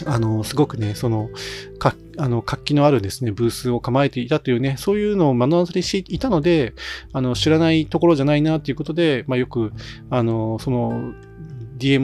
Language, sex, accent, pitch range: Japanese, male, native, 115-145 Hz